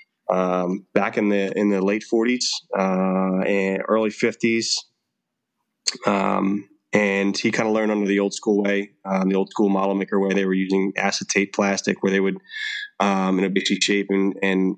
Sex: male